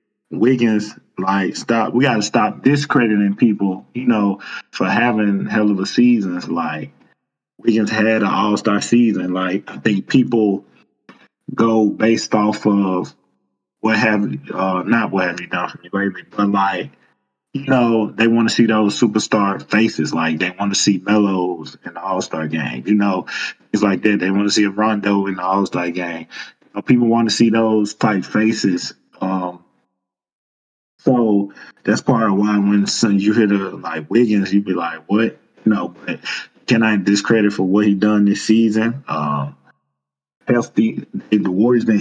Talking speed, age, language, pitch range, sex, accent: 175 wpm, 20-39, English, 95-115 Hz, male, American